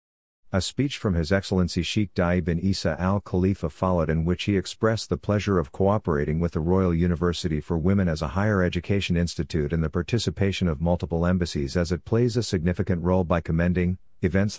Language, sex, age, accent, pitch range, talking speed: English, male, 50-69, American, 85-100 Hz, 185 wpm